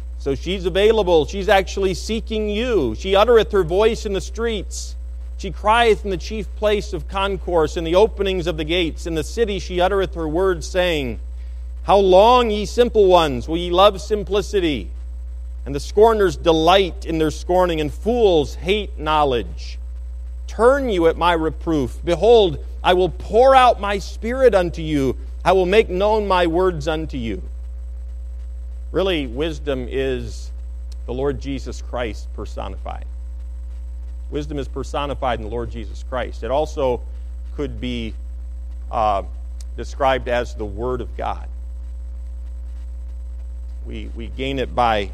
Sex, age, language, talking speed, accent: male, 50-69, English, 145 wpm, American